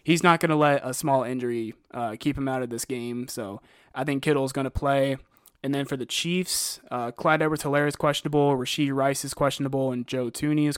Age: 20-39